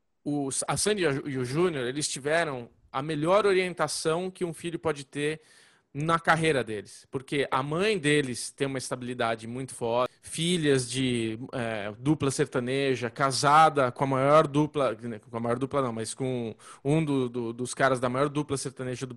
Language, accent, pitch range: Portuguese, Brazilian, 135-170 Hz